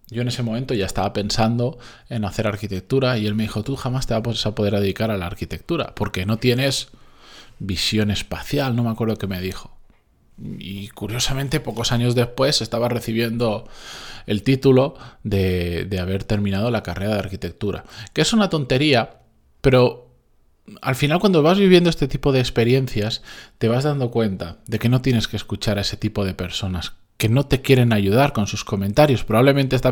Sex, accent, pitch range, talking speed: male, Spanish, 100-125 Hz, 185 wpm